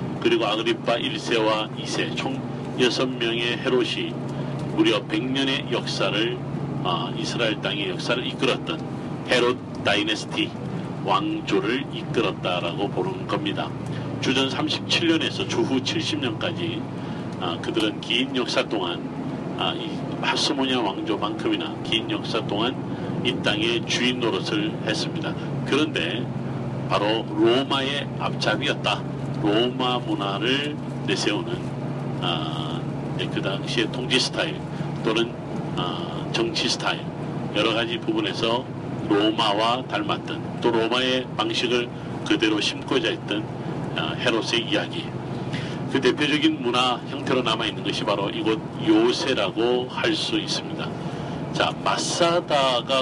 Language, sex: Korean, male